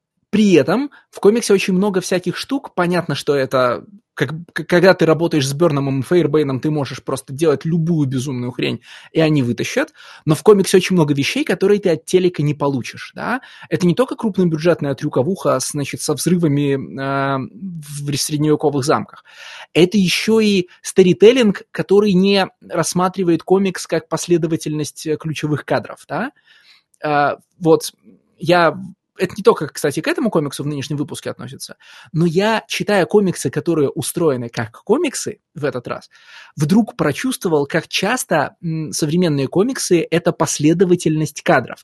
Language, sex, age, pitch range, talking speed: Russian, male, 20-39, 145-185 Hz, 140 wpm